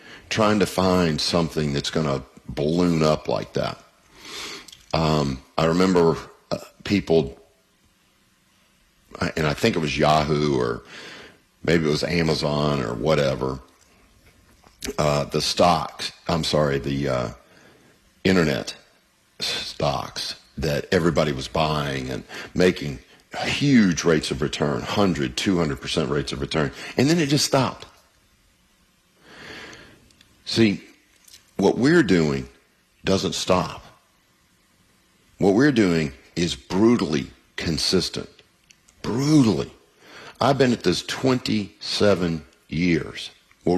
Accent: American